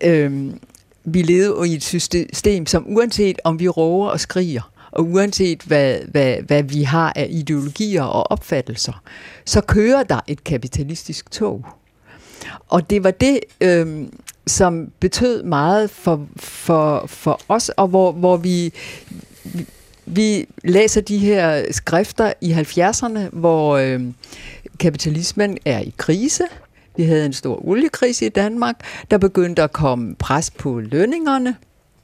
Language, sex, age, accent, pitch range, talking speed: Danish, female, 60-79, native, 150-205 Hz, 140 wpm